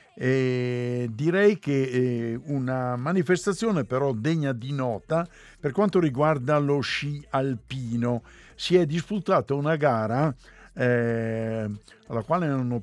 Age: 60-79